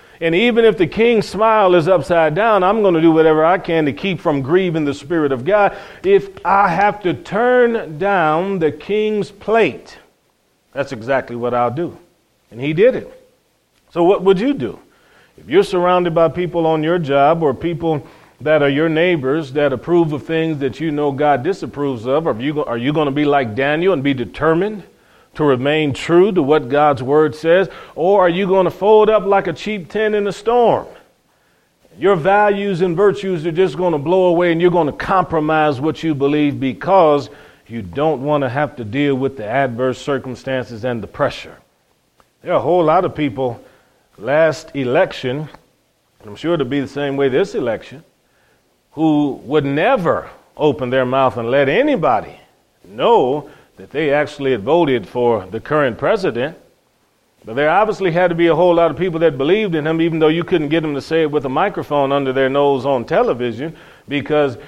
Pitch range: 140-185 Hz